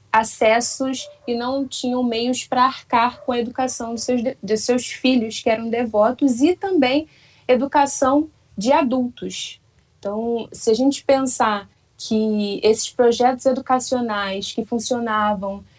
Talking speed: 135 wpm